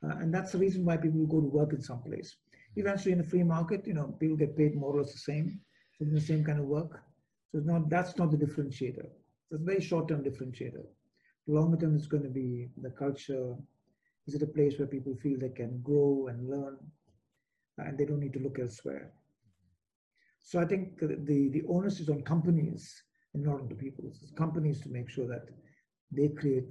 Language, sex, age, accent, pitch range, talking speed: English, male, 50-69, Indian, 130-160 Hz, 220 wpm